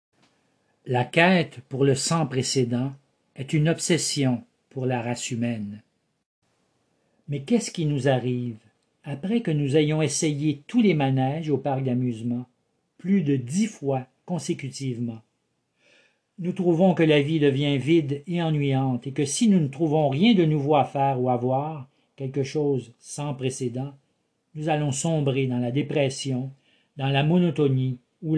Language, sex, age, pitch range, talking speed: French, male, 50-69, 130-155 Hz, 150 wpm